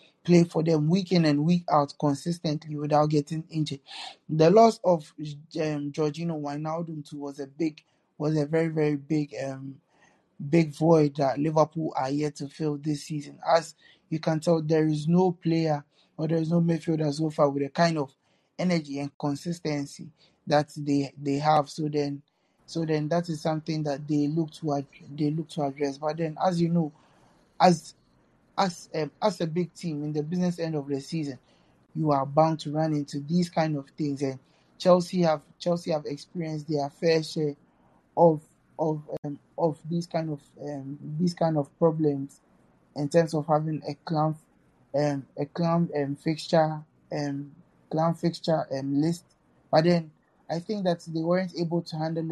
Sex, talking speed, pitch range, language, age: male, 180 wpm, 145-165 Hz, English, 20-39